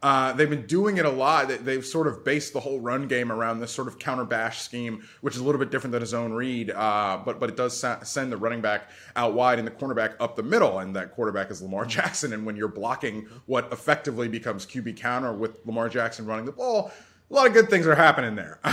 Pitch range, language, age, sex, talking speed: 115-150 Hz, English, 20-39, male, 250 wpm